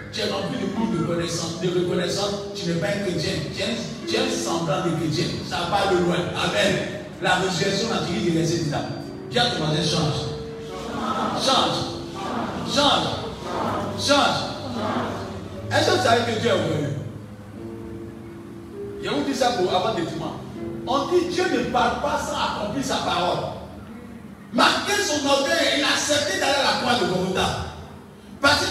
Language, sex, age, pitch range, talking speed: French, male, 50-69, 180-290 Hz, 165 wpm